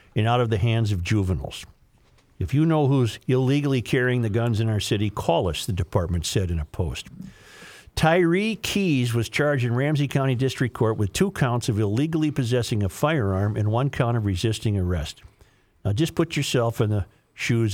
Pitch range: 110-155 Hz